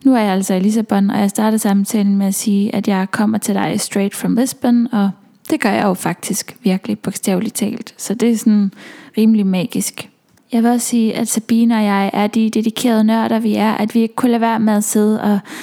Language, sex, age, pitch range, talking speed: English, female, 20-39, 205-230 Hz, 230 wpm